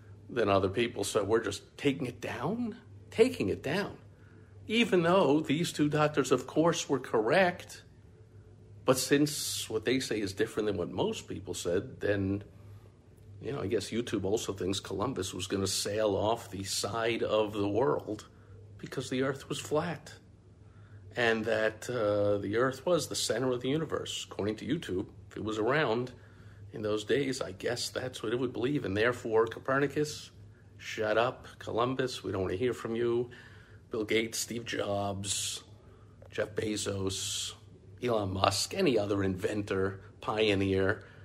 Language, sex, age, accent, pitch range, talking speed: English, male, 50-69, American, 100-125 Hz, 160 wpm